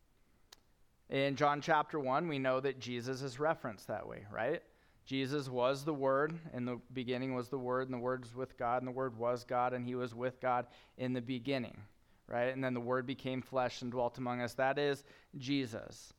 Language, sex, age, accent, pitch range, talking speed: English, male, 20-39, American, 125-150 Hz, 210 wpm